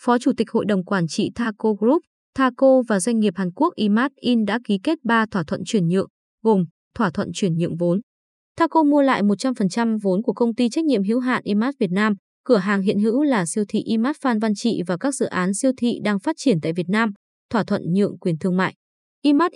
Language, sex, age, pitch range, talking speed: Vietnamese, female, 20-39, 195-250 Hz, 230 wpm